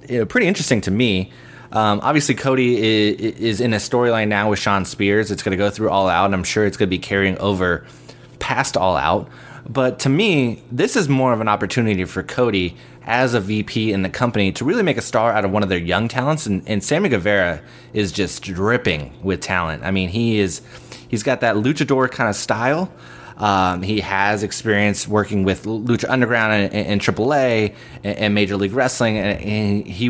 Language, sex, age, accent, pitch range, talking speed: English, male, 20-39, American, 95-120 Hz, 205 wpm